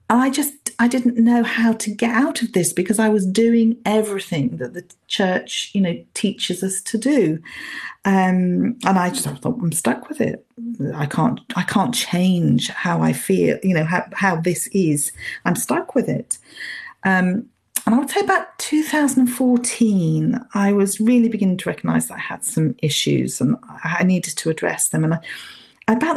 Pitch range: 165-230 Hz